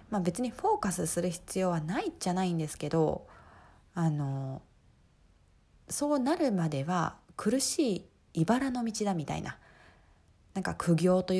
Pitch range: 155-220 Hz